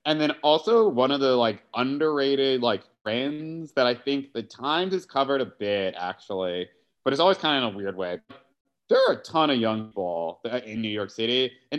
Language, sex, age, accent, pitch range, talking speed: English, male, 30-49, American, 110-150 Hz, 210 wpm